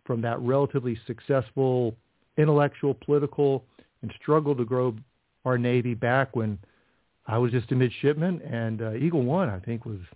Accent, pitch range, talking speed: American, 115-145 Hz, 155 wpm